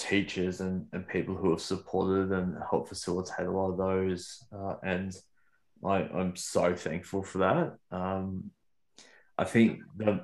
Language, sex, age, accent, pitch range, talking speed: English, male, 20-39, Australian, 95-105 Hz, 150 wpm